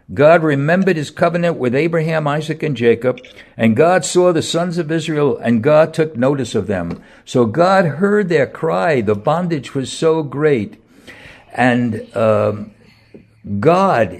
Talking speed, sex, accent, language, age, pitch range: 150 wpm, male, American, English, 60-79, 125-165 Hz